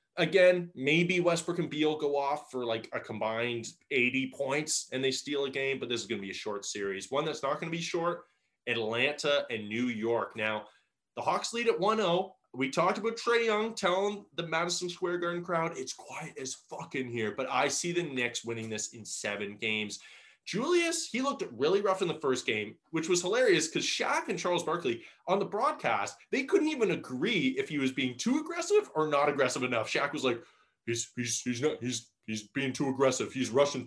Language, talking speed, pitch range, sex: English, 210 wpm, 125-175 Hz, male